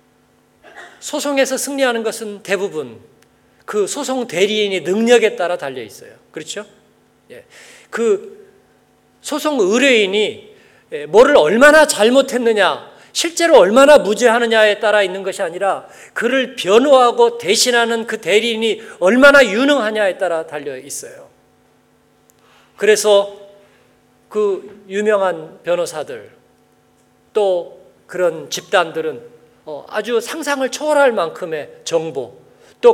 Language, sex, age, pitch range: Korean, male, 40-59, 210-305 Hz